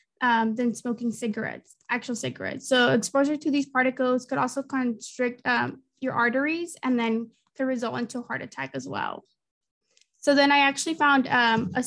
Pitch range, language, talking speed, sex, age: 240-270 Hz, English, 170 wpm, female, 20-39